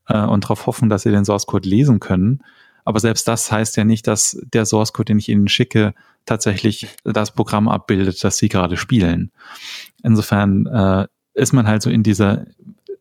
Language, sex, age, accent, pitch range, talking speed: German, male, 30-49, German, 105-120 Hz, 175 wpm